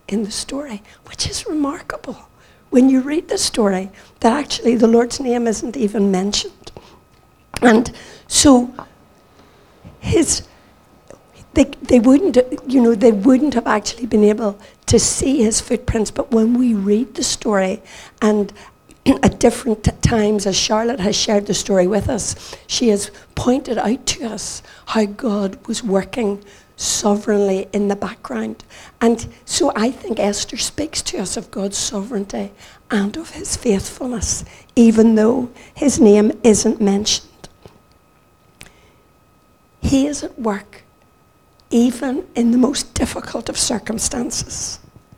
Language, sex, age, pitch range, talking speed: English, female, 60-79, 210-255 Hz, 135 wpm